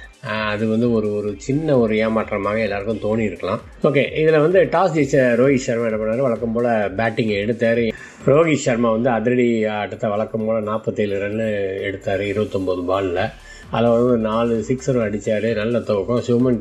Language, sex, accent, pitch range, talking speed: Tamil, male, native, 110-125 Hz, 160 wpm